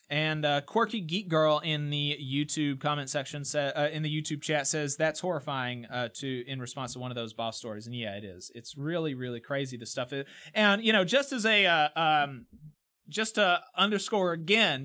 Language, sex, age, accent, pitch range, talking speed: English, male, 30-49, American, 135-205 Hz, 210 wpm